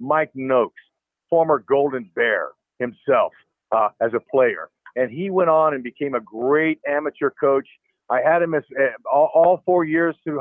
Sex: male